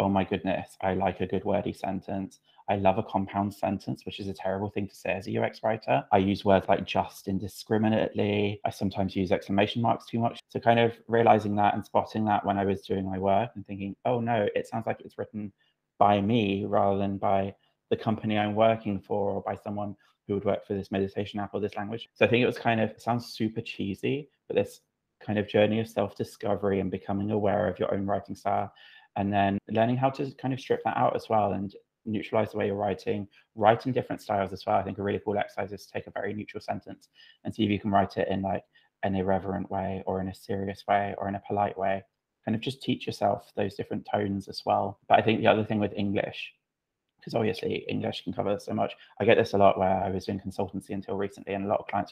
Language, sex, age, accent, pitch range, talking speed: English, male, 20-39, British, 95-110 Hz, 240 wpm